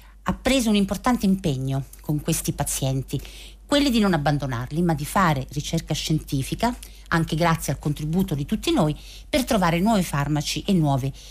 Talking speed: 160 wpm